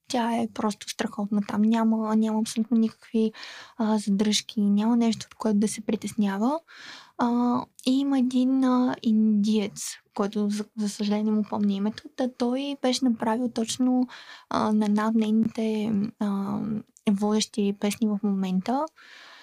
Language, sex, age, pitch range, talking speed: Bulgarian, female, 20-39, 210-240 Hz, 135 wpm